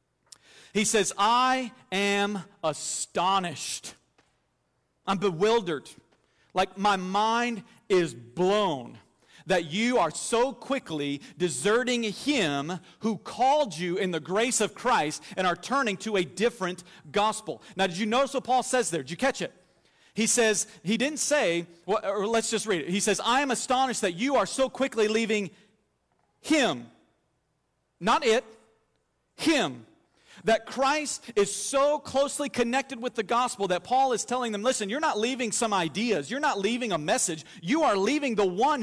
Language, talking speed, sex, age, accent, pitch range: English, 160 wpm, male, 40-59, American, 190-250 Hz